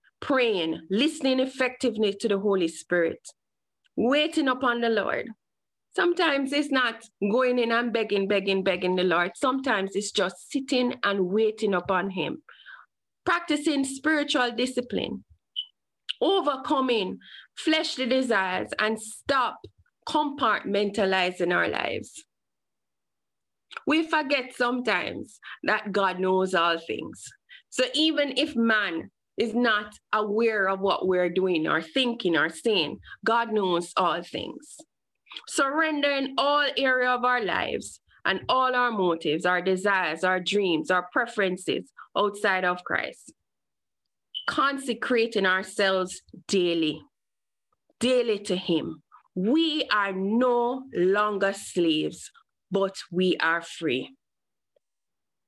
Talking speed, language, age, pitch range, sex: 110 wpm, English, 20-39, 185-260 Hz, female